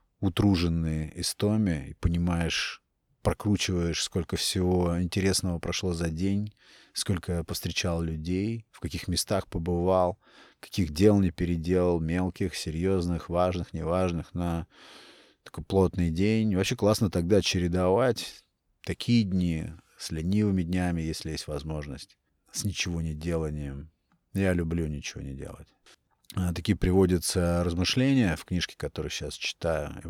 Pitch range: 80-95 Hz